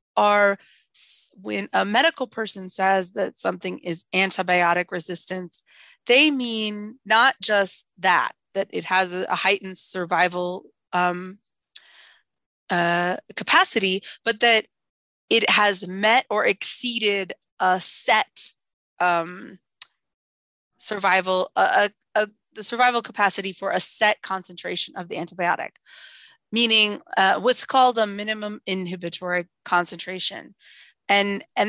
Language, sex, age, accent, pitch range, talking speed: English, female, 20-39, American, 180-210 Hz, 105 wpm